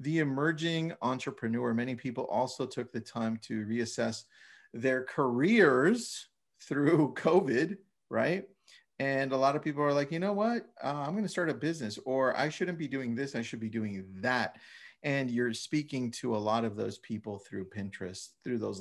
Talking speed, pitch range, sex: 180 wpm, 115-160 Hz, male